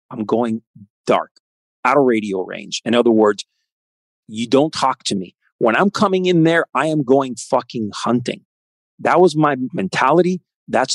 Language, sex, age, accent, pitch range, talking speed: English, male, 40-59, American, 110-140 Hz, 165 wpm